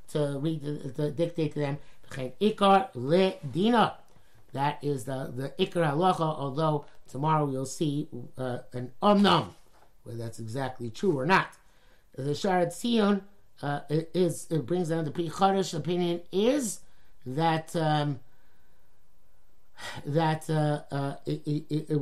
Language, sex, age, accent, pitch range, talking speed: English, male, 50-69, American, 130-170 Hz, 125 wpm